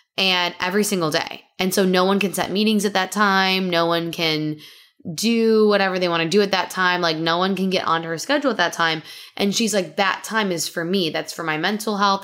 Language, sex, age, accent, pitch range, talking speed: English, female, 10-29, American, 165-200 Hz, 245 wpm